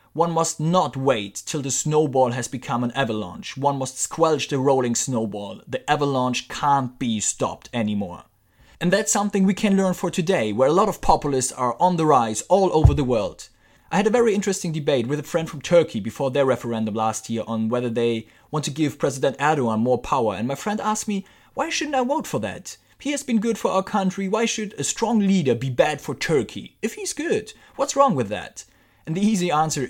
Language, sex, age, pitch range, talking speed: English, male, 30-49, 120-185 Hz, 215 wpm